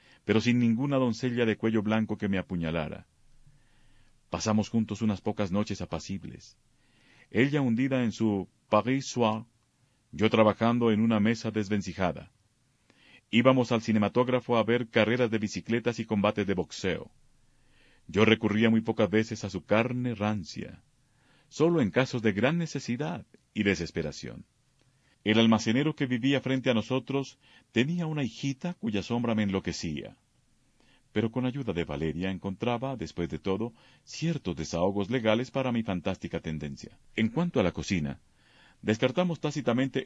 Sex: male